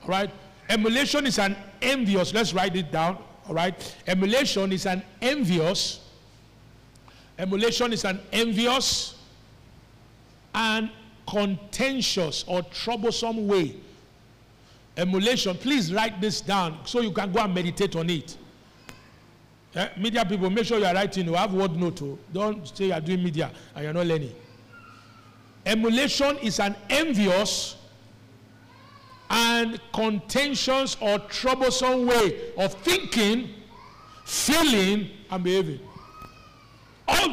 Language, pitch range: English, 165-230 Hz